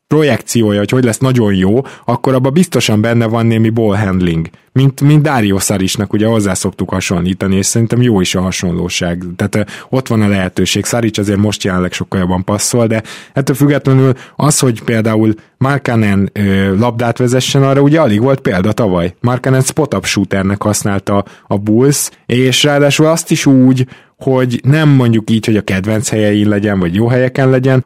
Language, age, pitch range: Hungarian, 20-39, 100-130 Hz